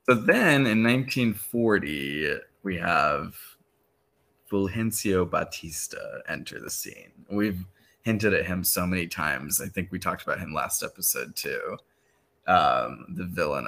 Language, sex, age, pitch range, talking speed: English, male, 20-39, 90-110 Hz, 130 wpm